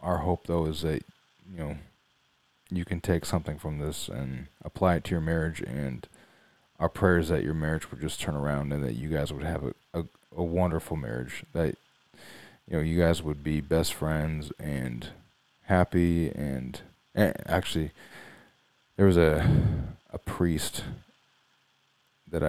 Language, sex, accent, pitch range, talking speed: English, male, American, 75-90 Hz, 165 wpm